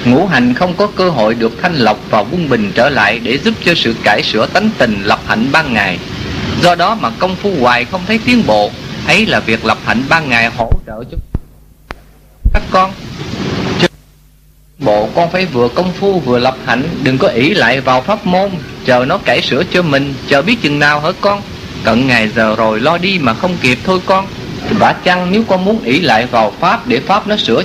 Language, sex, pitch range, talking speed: English, male, 135-205 Hz, 220 wpm